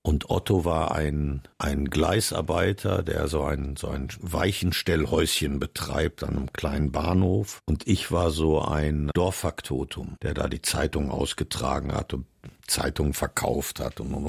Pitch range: 85-115 Hz